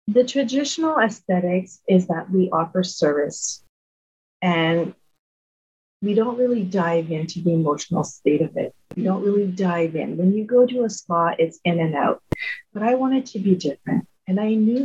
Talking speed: 180 wpm